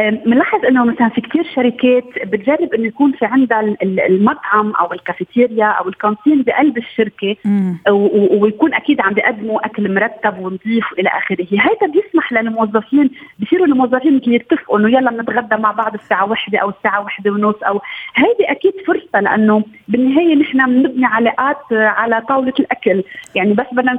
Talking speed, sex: 155 wpm, female